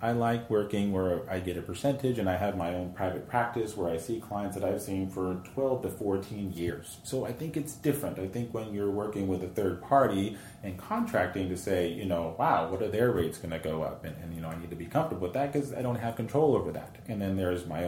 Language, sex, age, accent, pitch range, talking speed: English, male, 30-49, American, 95-125 Hz, 260 wpm